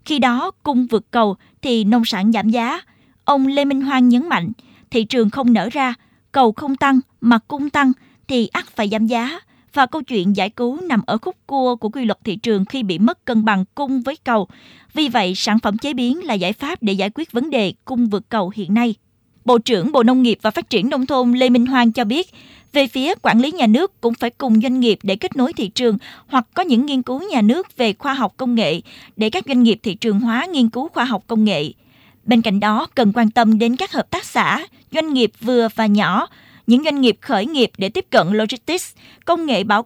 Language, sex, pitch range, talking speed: Vietnamese, female, 220-265 Hz, 235 wpm